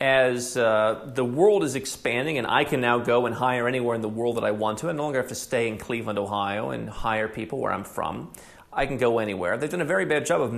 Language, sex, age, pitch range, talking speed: English, male, 40-59, 125-190 Hz, 265 wpm